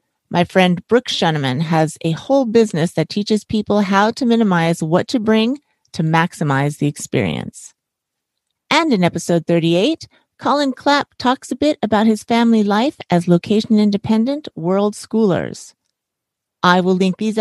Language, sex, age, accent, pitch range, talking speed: English, female, 40-59, American, 165-220 Hz, 145 wpm